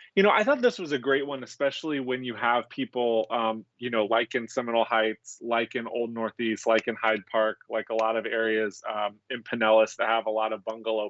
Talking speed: 230 wpm